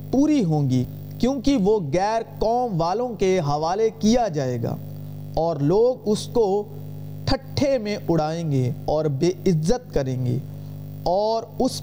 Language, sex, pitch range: Urdu, male, 145-230 Hz